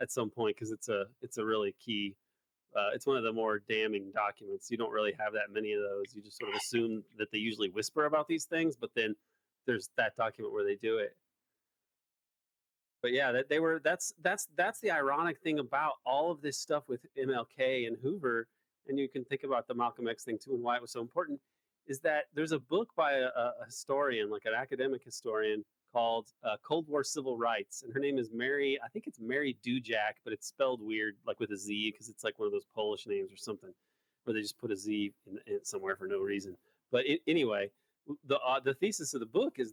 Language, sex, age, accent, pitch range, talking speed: English, male, 30-49, American, 115-150 Hz, 230 wpm